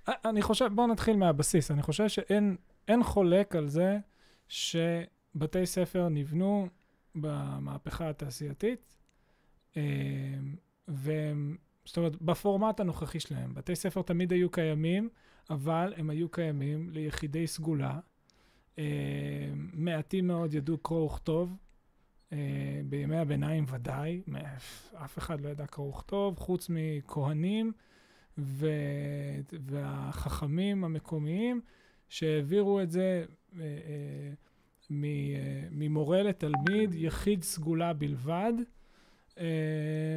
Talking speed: 90 wpm